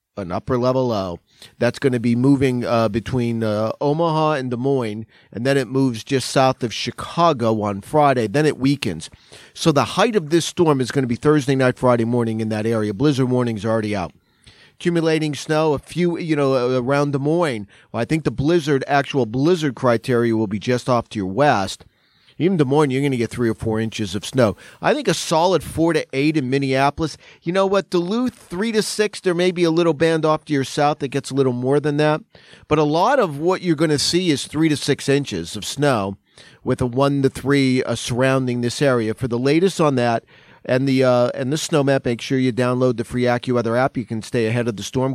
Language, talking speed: English, 225 wpm